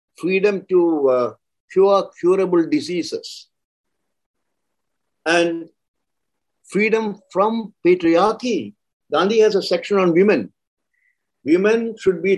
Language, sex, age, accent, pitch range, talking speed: English, male, 60-79, Indian, 170-265 Hz, 90 wpm